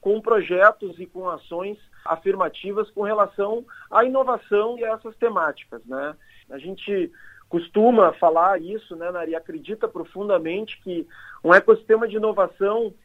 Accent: Brazilian